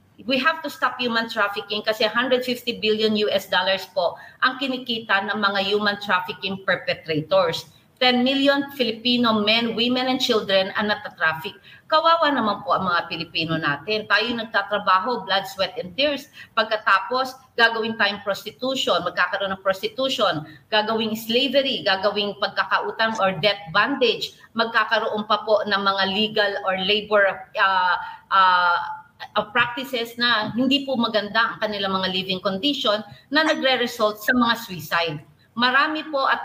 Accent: Filipino